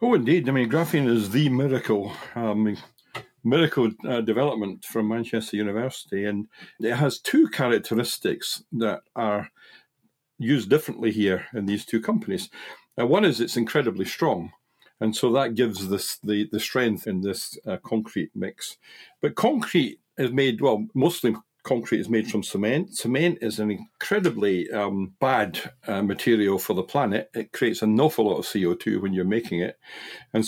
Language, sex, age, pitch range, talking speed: English, male, 60-79, 105-140 Hz, 160 wpm